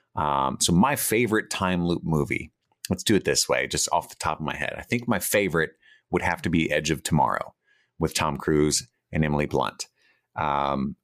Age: 30-49